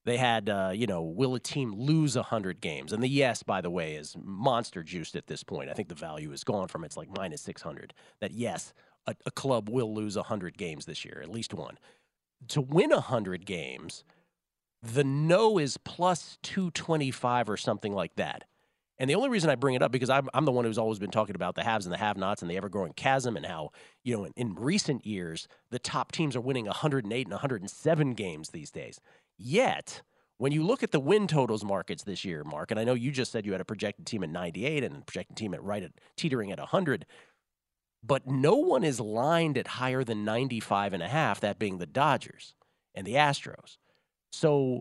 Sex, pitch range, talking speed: male, 105-145 Hz, 215 wpm